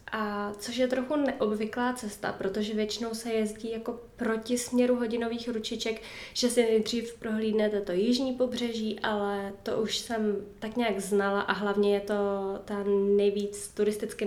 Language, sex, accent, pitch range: Czech, female, native, 205-235 Hz